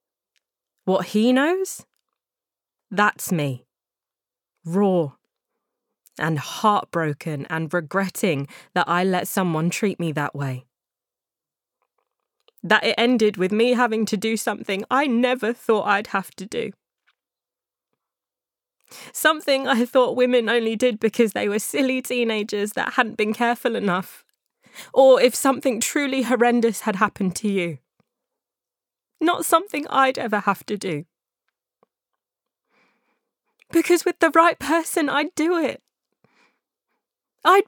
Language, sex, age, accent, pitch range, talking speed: English, female, 20-39, British, 195-295 Hz, 120 wpm